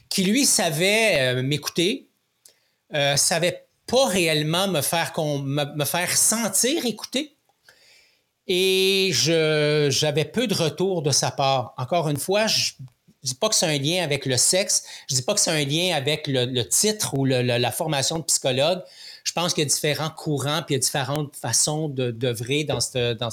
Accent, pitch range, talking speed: Canadian, 140-190 Hz, 185 wpm